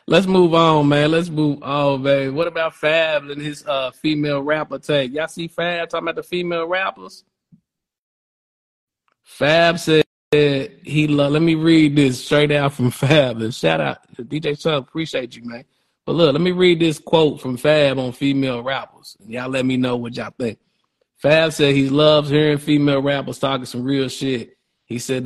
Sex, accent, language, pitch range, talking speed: male, American, English, 125-150 Hz, 185 wpm